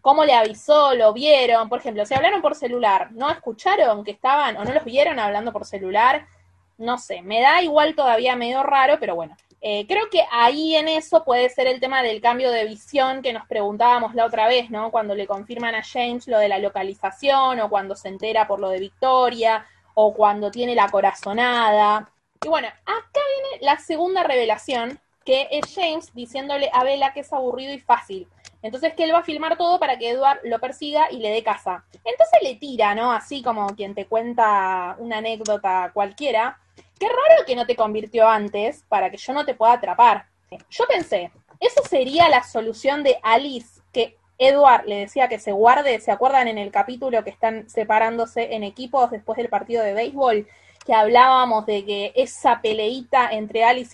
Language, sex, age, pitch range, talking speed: Spanish, female, 20-39, 215-265 Hz, 190 wpm